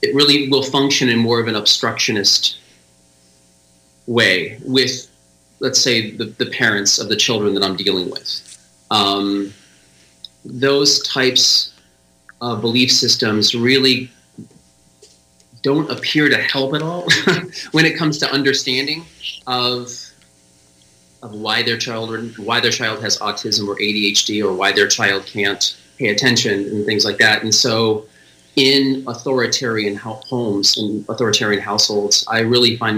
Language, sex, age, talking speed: English, male, 30-49, 135 wpm